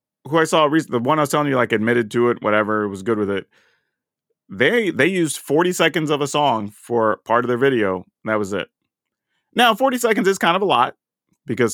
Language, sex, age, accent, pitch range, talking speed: English, male, 30-49, American, 115-155 Hz, 225 wpm